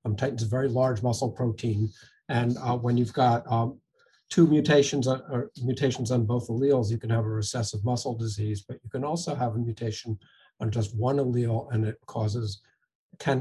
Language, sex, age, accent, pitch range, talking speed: English, male, 50-69, American, 115-140 Hz, 190 wpm